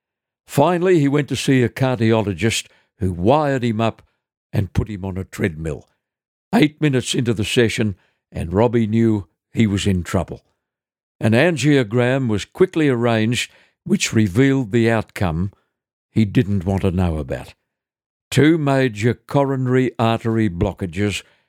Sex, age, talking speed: male, 60-79, 135 wpm